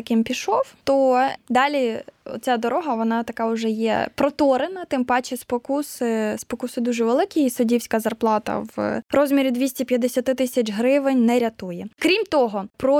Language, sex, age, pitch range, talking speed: Ukrainian, female, 20-39, 225-280 Hz, 135 wpm